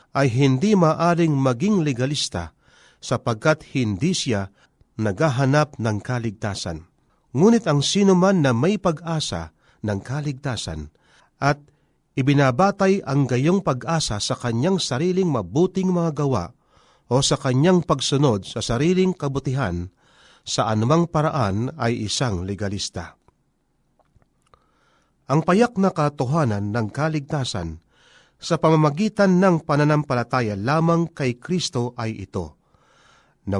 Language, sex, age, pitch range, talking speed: Filipino, male, 40-59, 115-160 Hz, 105 wpm